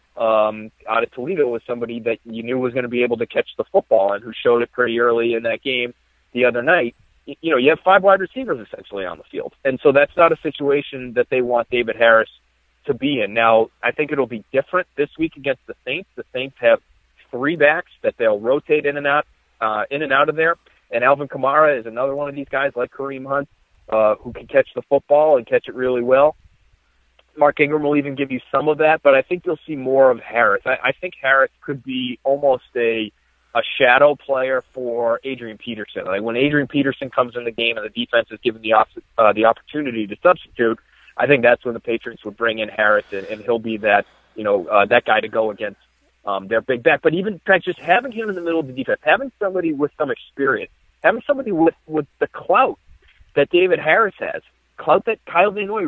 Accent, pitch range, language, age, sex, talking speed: American, 115-150 Hz, English, 30-49, male, 230 wpm